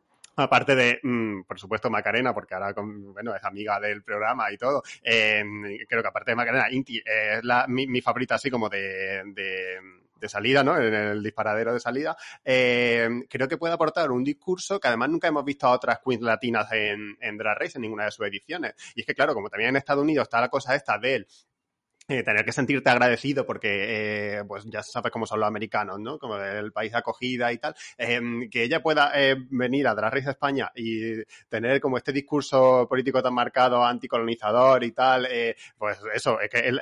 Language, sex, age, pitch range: Spanish, male, 20-39, 105-130 Hz